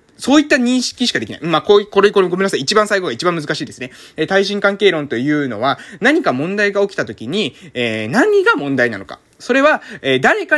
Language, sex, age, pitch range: Japanese, male, 20-39, 175-255 Hz